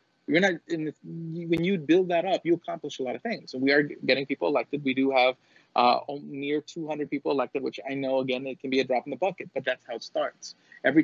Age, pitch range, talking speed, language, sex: 30-49, 130-160 Hz, 235 wpm, English, male